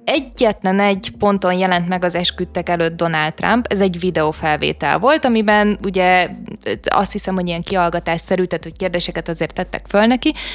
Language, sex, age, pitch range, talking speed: Hungarian, female, 20-39, 180-220 Hz, 155 wpm